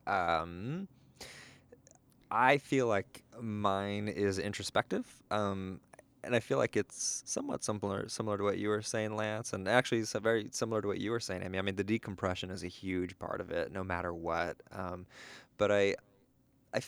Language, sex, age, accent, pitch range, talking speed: English, male, 20-39, American, 95-115 Hz, 190 wpm